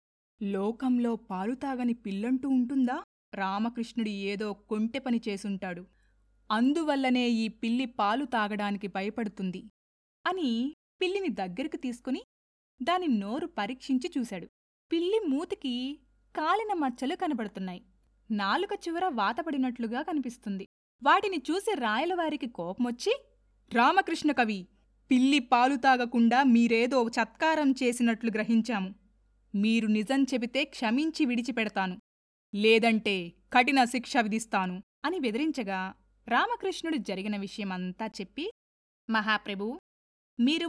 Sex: female